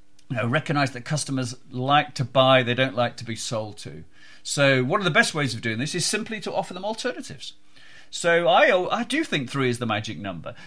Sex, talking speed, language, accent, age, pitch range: male, 225 wpm, English, British, 40-59, 115-165 Hz